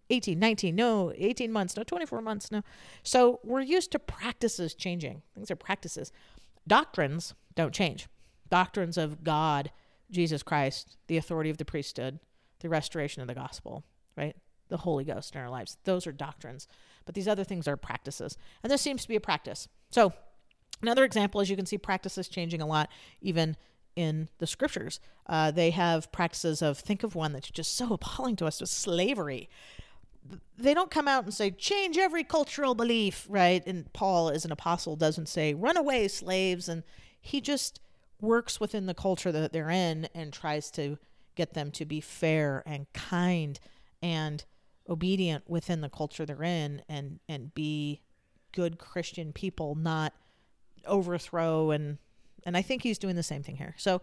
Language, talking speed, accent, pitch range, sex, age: English, 175 wpm, American, 150-200 Hz, female, 40-59